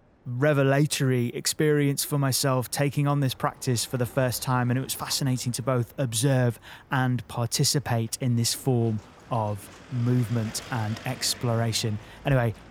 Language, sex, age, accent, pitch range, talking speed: English, male, 20-39, British, 115-140 Hz, 135 wpm